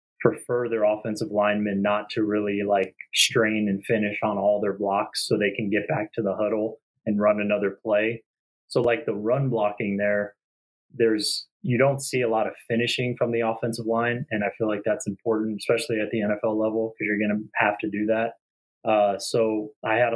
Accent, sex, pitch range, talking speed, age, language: American, male, 105-115 Hz, 200 wpm, 20-39, English